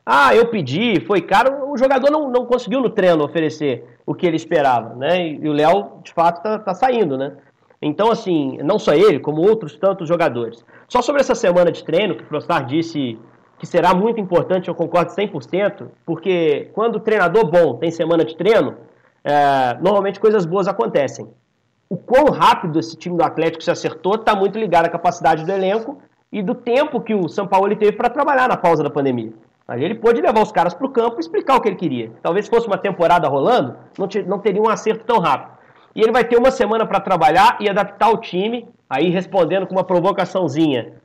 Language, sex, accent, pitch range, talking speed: Portuguese, male, Brazilian, 170-235 Hz, 205 wpm